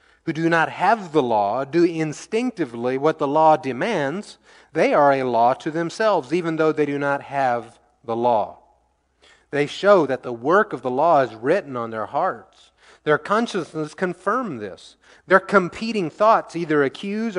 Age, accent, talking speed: 30-49, American, 160 wpm